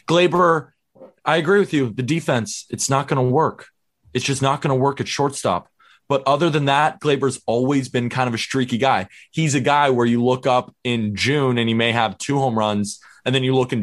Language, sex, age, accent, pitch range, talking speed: English, male, 20-39, American, 115-140 Hz, 230 wpm